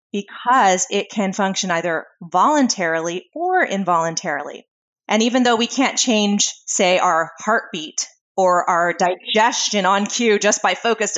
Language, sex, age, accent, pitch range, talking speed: English, female, 20-39, American, 185-235 Hz, 135 wpm